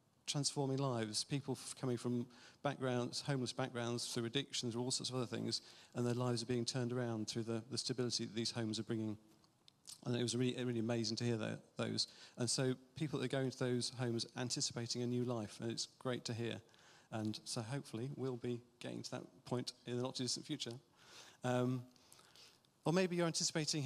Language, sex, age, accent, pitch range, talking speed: English, male, 40-59, British, 115-130 Hz, 200 wpm